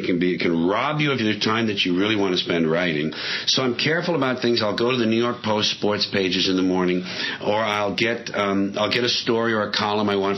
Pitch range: 90-115 Hz